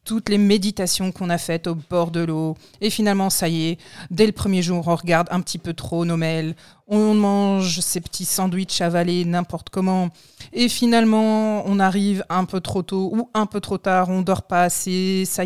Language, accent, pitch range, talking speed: French, French, 170-210 Hz, 210 wpm